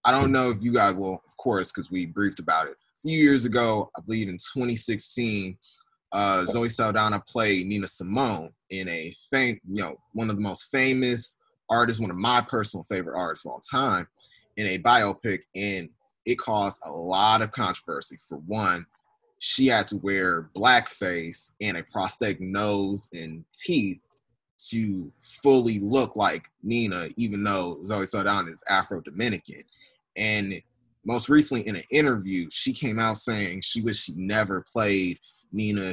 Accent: American